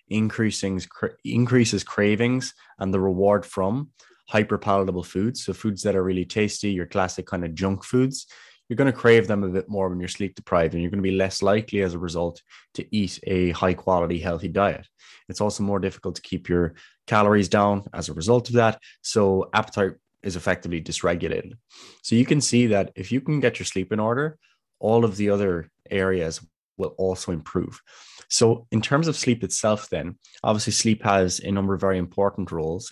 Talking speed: 195 wpm